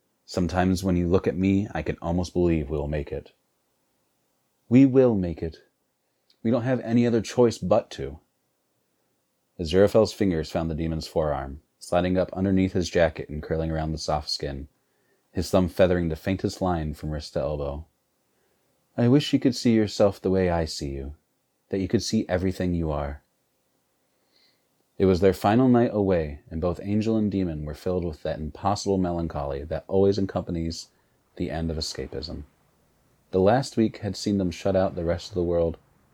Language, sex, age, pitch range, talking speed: English, male, 30-49, 80-100 Hz, 180 wpm